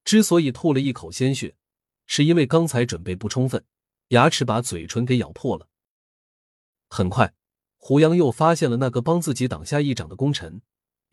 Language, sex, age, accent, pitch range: Chinese, male, 30-49, native, 105-150 Hz